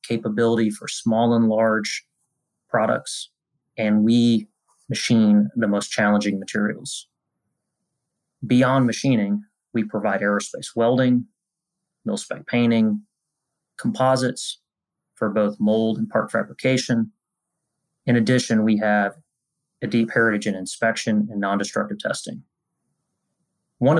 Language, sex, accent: English, male, American